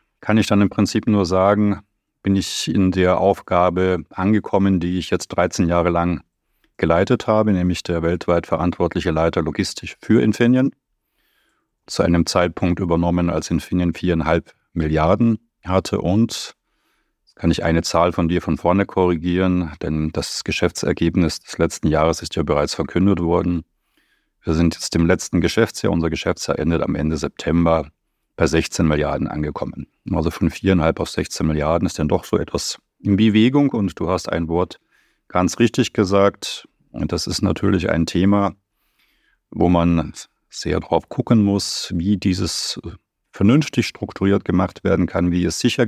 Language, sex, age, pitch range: German, male, 30-49, 85-100 Hz